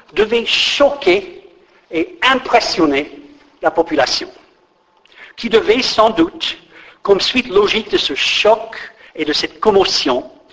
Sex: male